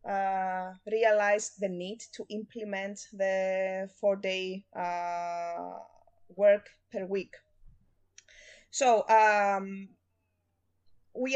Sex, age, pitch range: female, 20-39, 190-240 Hz